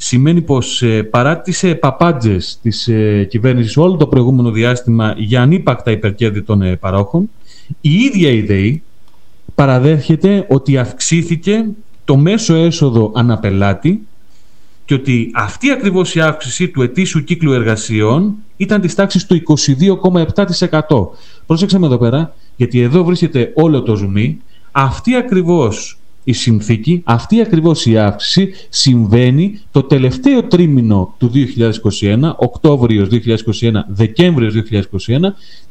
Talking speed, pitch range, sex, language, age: 115 wpm, 115-170 Hz, male, Greek, 30-49